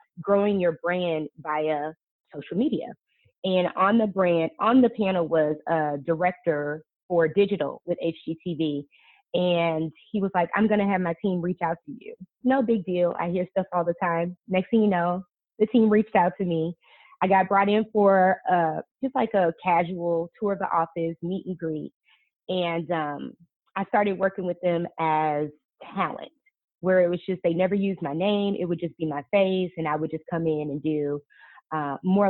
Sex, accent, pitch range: female, American, 160-185 Hz